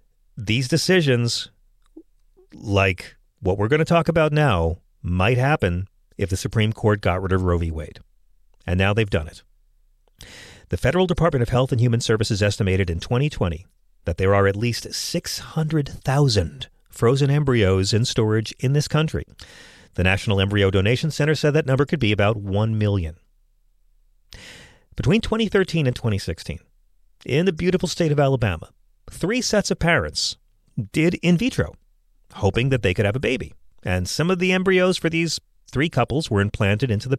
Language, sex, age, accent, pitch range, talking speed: English, male, 40-59, American, 100-165 Hz, 165 wpm